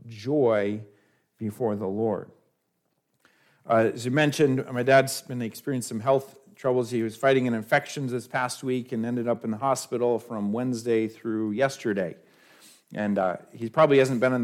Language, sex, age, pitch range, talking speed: English, male, 50-69, 115-150 Hz, 165 wpm